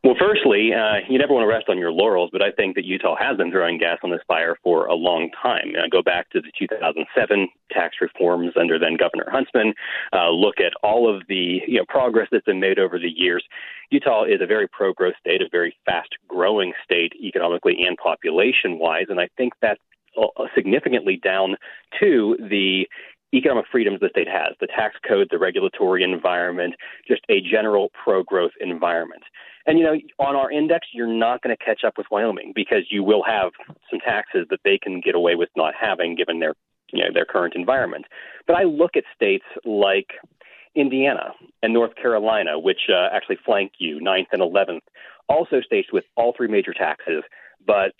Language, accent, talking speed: English, American, 195 wpm